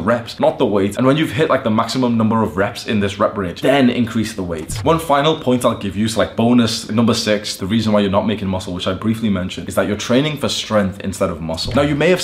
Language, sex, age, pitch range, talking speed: English, male, 20-39, 100-125 Hz, 280 wpm